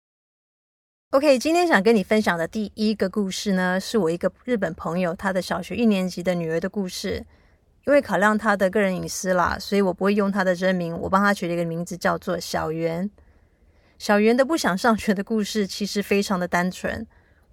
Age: 30-49